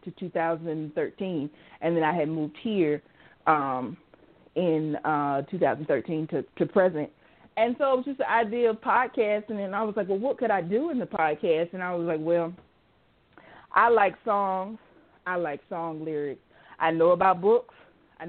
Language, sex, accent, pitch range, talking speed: English, female, American, 165-215 Hz, 170 wpm